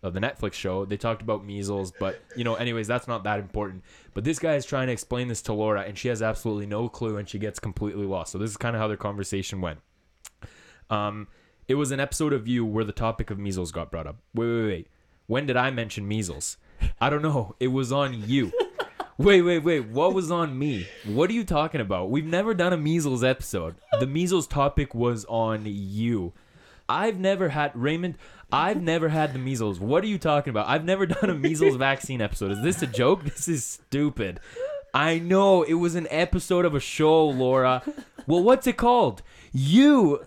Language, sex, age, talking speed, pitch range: English, male, 20-39, 215 wpm, 105-160 Hz